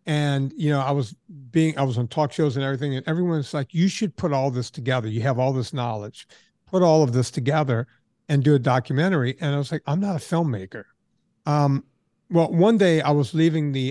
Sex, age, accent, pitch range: male, 50-69, American, 130-165 Hz